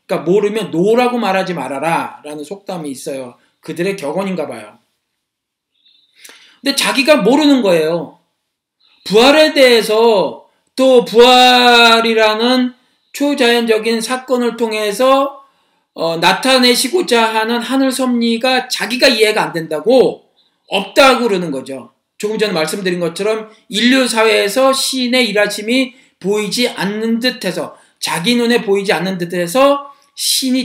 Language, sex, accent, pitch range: Korean, male, native, 175-250 Hz